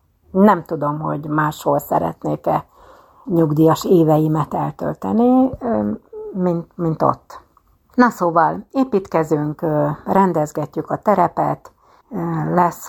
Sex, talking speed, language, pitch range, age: female, 85 wpm, Hungarian, 155-190 Hz, 60-79